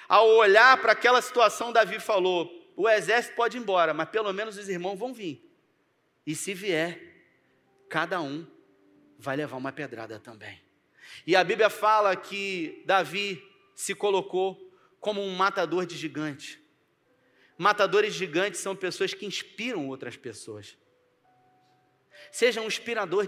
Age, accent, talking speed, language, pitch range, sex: 30-49, Brazilian, 135 wpm, Portuguese, 175-220 Hz, male